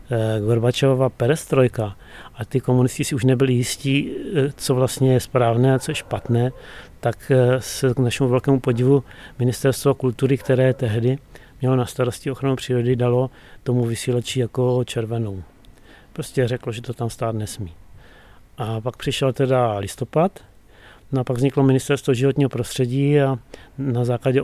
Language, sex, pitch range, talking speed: Czech, male, 115-135 Hz, 145 wpm